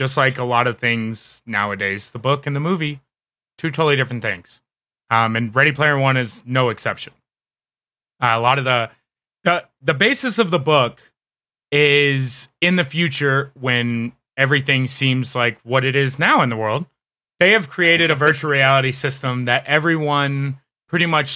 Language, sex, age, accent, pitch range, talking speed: English, male, 30-49, American, 120-150 Hz, 170 wpm